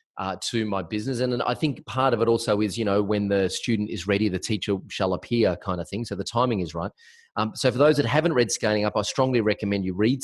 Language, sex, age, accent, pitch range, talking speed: English, male, 30-49, Australian, 95-130 Hz, 270 wpm